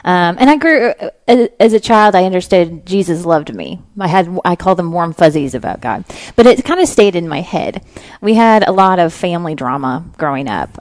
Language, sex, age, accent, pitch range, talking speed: English, female, 30-49, American, 170-220 Hz, 210 wpm